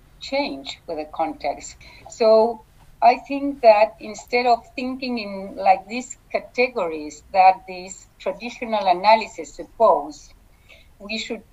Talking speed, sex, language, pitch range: 115 wpm, female, English, 180-240 Hz